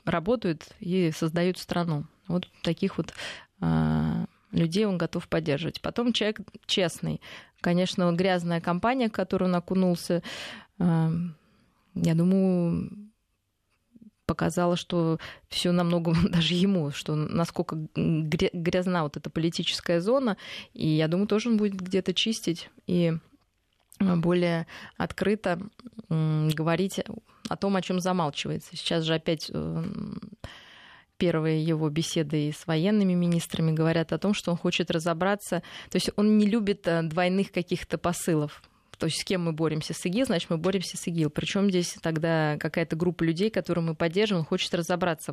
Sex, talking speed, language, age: female, 140 wpm, Russian, 20-39